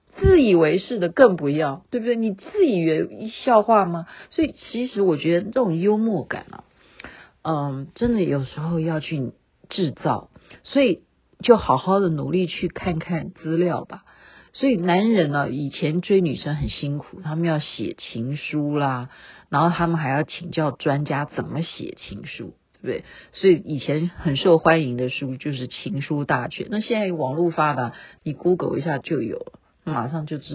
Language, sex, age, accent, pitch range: Chinese, female, 50-69, native, 155-235 Hz